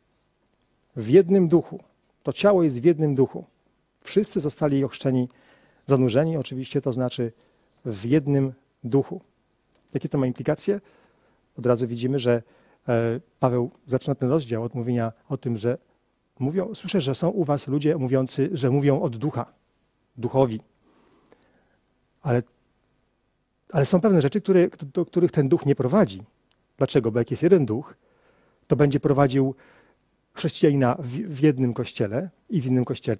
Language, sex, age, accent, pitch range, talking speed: Polish, male, 40-59, native, 120-150 Hz, 140 wpm